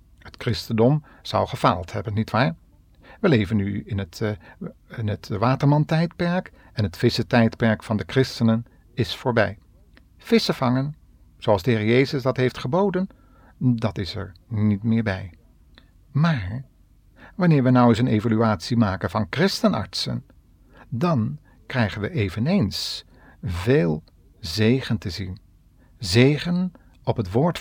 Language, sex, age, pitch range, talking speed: Dutch, male, 50-69, 95-130 Hz, 125 wpm